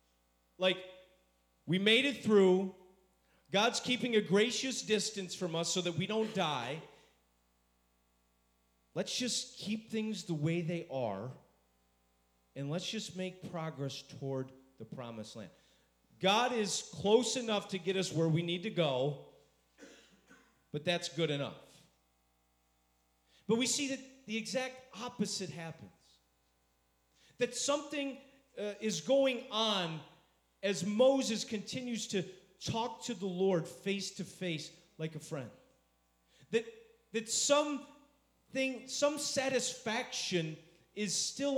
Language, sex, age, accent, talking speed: English, male, 40-59, American, 120 wpm